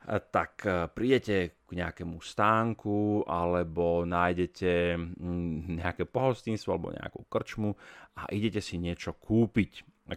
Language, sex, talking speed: Slovak, male, 105 wpm